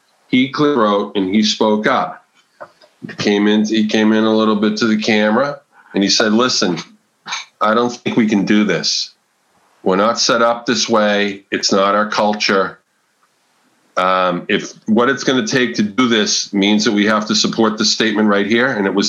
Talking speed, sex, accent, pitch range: 195 wpm, male, American, 100-120 Hz